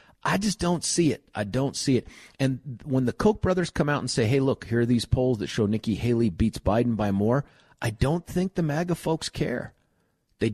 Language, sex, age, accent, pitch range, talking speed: English, male, 40-59, American, 95-135 Hz, 230 wpm